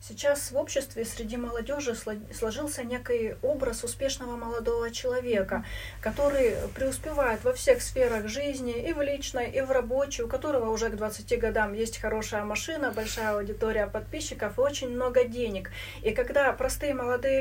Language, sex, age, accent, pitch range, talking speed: Russian, female, 30-49, native, 220-285 Hz, 150 wpm